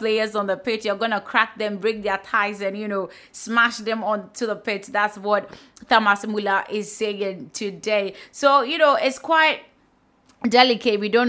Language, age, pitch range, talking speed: English, 20-39, 200-240 Hz, 180 wpm